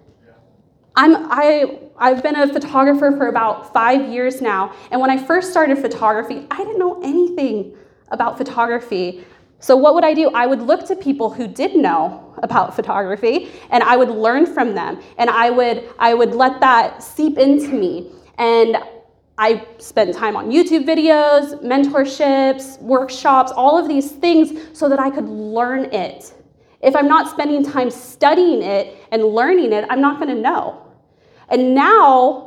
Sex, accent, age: female, American, 20-39